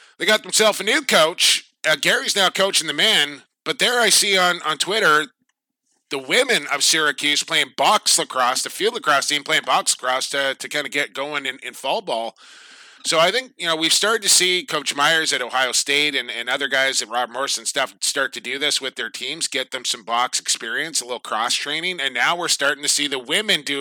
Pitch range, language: 125-165 Hz, English